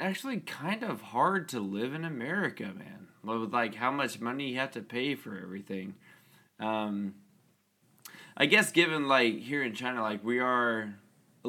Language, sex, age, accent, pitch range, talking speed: English, male, 20-39, American, 105-125 Hz, 170 wpm